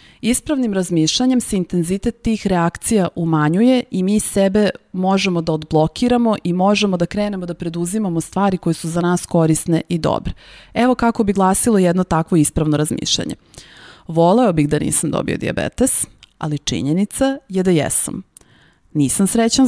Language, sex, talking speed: Slovak, female, 145 wpm